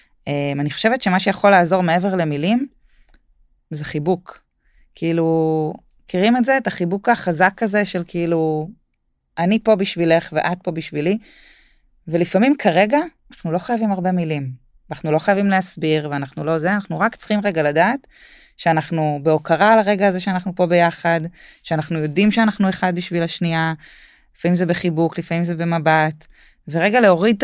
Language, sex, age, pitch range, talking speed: Hebrew, female, 20-39, 165-200 Hz, 150 wpm